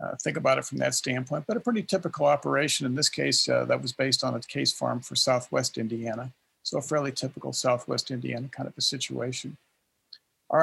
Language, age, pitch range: English, 50-69, 130-160 Hz